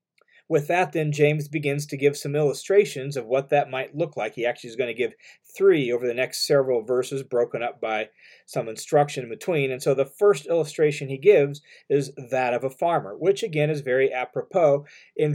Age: 40-59